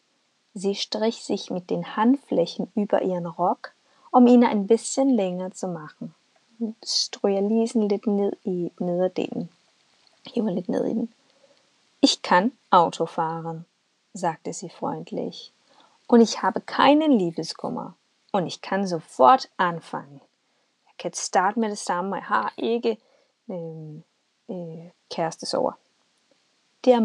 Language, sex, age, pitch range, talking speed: Danish, female, 20-39, 180-245 Hz, 75 wpm